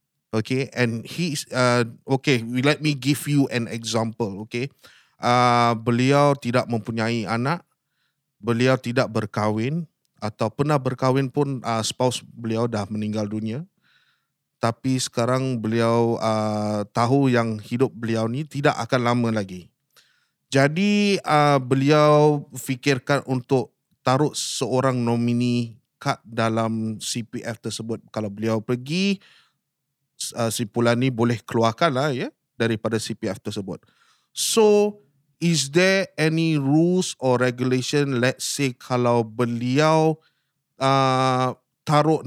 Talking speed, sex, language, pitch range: 115 wpm, male, Malay, 115-145 Hz